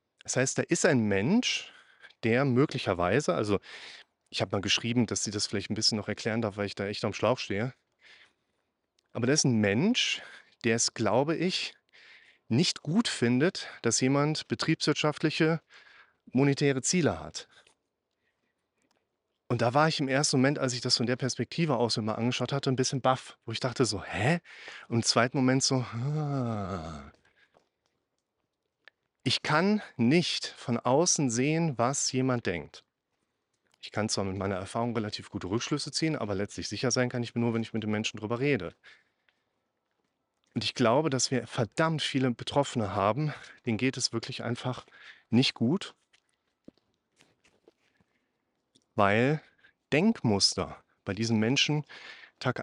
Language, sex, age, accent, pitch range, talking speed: German, male, 30-49, German, 115-140 Hz, 155 wpm